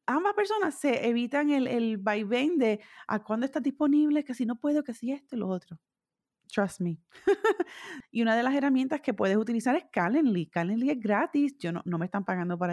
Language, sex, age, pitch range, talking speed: Spanish, female, 30-49, 200-280 Hz, 210 wpm